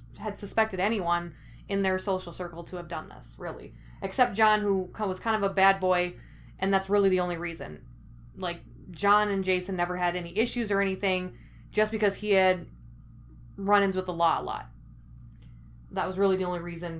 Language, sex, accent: English, female, American